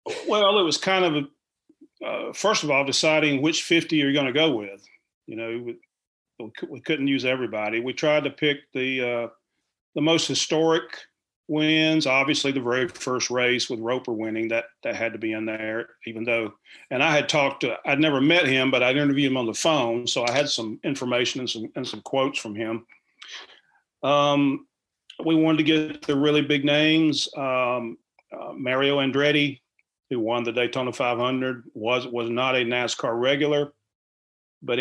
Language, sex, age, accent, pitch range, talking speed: English, male, 40-59, American, 120-150 Hz, 180 wpm